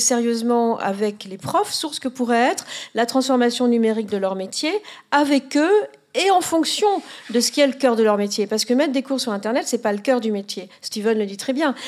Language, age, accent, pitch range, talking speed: French, 50-69, French, 205-265 Hz, 245 wpm